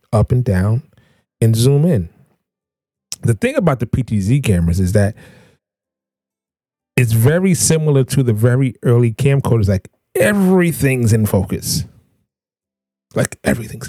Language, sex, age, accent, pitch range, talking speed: English, male, 30-49, American, 110-140 Hz, 120 wpm